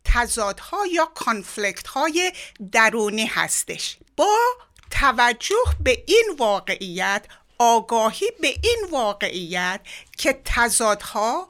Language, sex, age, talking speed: Persian, female, 60-79, 85 wpm